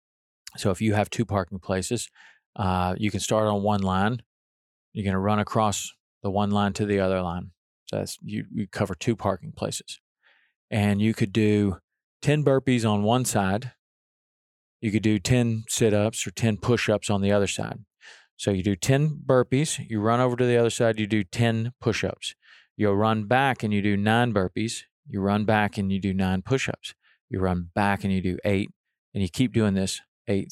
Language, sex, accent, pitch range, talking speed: English, male, American, 95-115 Hz, 205 wpm